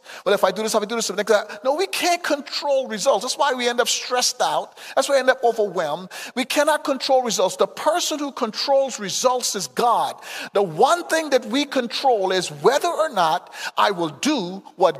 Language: English